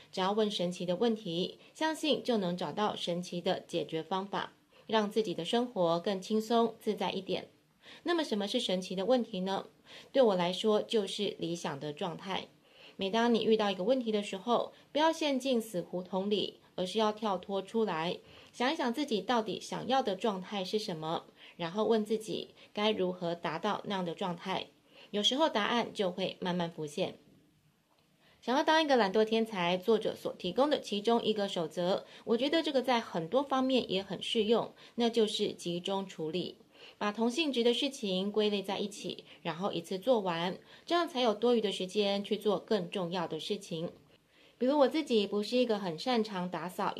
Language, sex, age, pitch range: Chinese, female, 20-39, 185-235 Hz